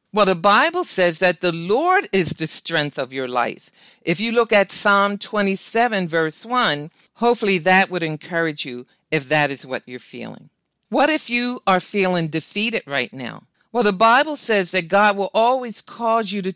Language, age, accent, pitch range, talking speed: English, 50-69, American, 165-230 Hz, 185 wpm